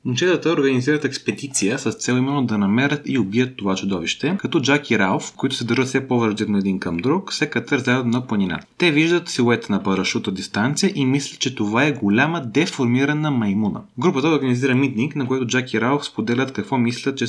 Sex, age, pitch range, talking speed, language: male, 30-49, 115-150 Hz, 190 wpm, Bulgarian